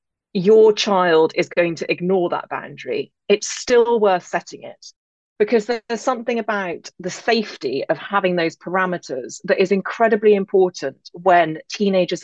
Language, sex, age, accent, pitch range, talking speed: English, female, 30-49, British, 165-205 Hz, 140 wpm